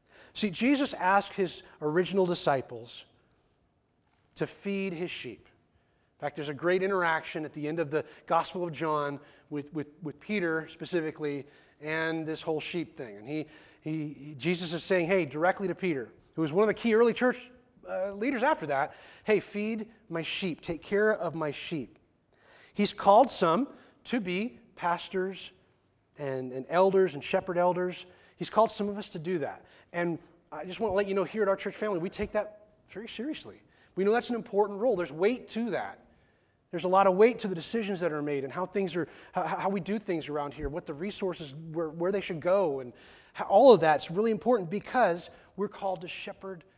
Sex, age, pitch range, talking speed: male, 30-49, 160-200 Hz, 200 wpm